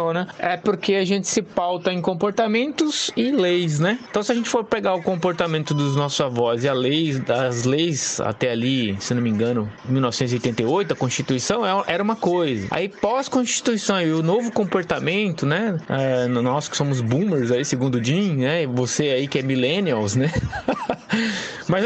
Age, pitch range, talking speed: 20-39, 140-205 Hz, 180 wpm